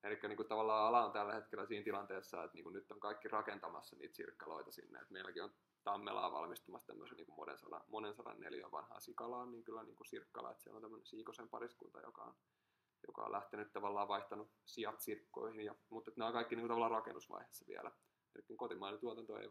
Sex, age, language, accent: male, 20-39, Finnish, native